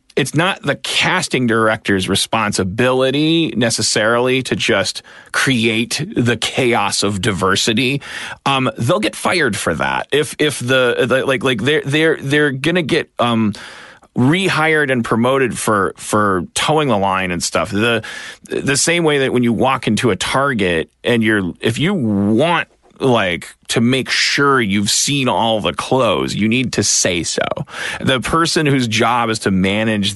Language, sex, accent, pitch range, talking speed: English, male, American, 115-150 Hz, 165 wpm